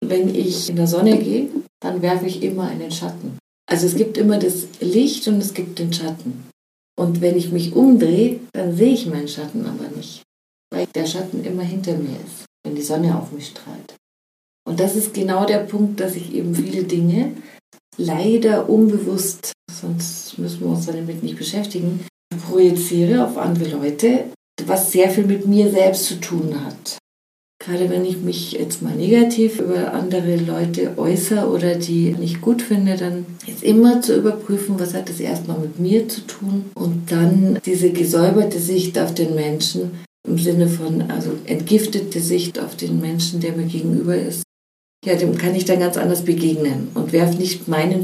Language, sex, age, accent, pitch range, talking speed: German, female, 40-59, German, 165-200 Hz, 180 wpm